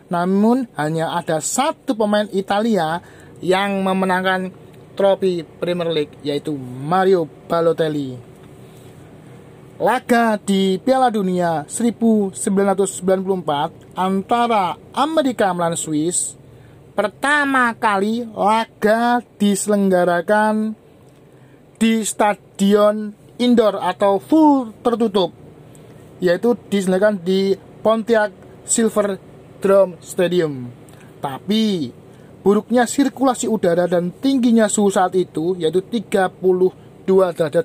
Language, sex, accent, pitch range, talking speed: Indonesian, male, native, 160-210 Hz, 85 wpm